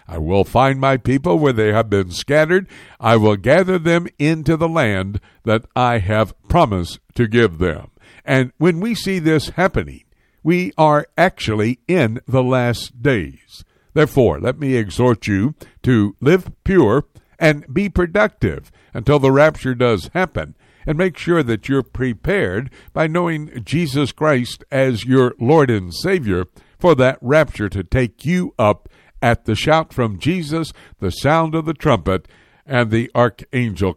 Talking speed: 155 wpm